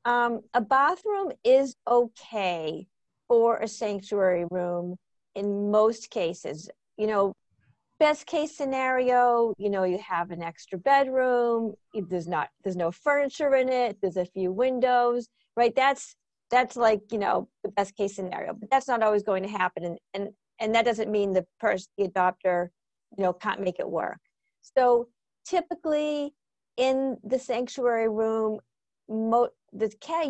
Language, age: English, 50-69